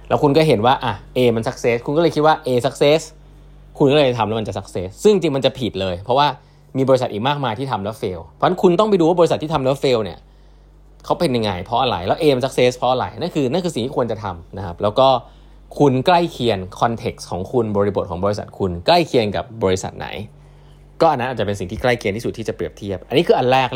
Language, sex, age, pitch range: Thai, male, 20-39, 105-150 Hz